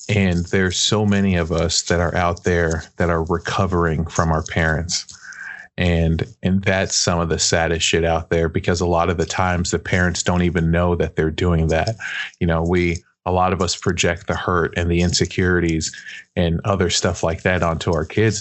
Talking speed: 200 wpm